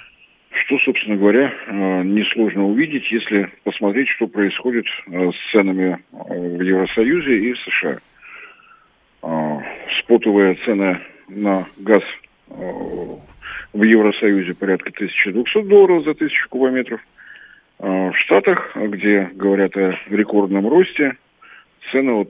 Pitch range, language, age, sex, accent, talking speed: 100-120 Hz, Russian, 50-69, male, native, 100 wpm